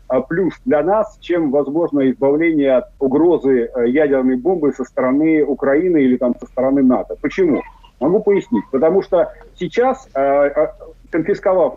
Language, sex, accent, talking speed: Russian, male, native, 130 wpm